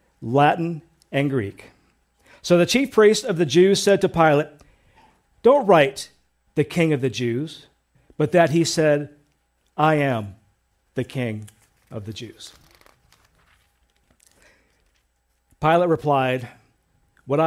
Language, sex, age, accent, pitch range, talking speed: English, male, 50-69, American, 130-180 Hz, 115 wpm